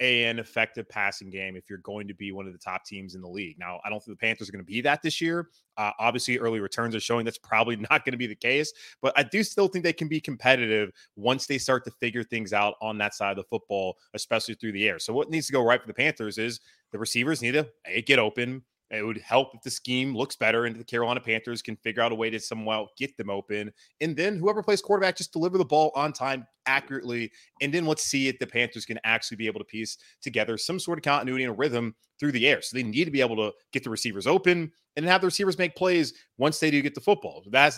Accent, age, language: American, 20-39, English